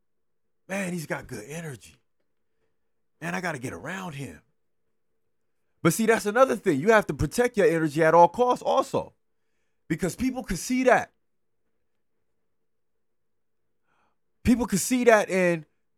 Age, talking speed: 30-49, 140 wpm